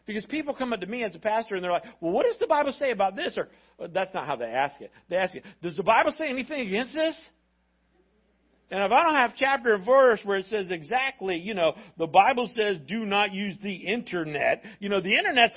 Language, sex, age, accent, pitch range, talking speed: English, male, 50-69, American, 165-250 Hz, 245 wpm